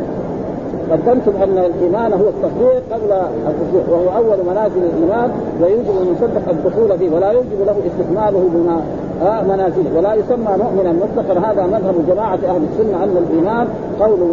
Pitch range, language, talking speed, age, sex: 175-215 Hz, Arabic, 140 wpm, 50-69, male